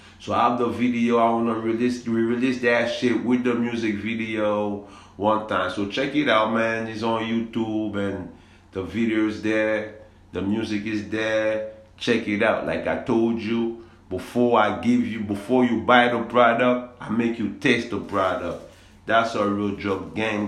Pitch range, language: 100-125 Hz, English